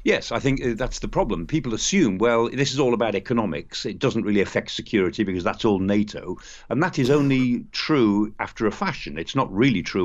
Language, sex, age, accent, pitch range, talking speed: English, male, 50-69, British, 105-135 Hz, 210 wpm